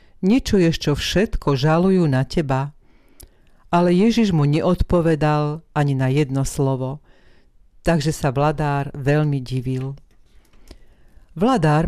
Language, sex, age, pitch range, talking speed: Slovak, female, 50-69, 140-165 Hz, 100 wpm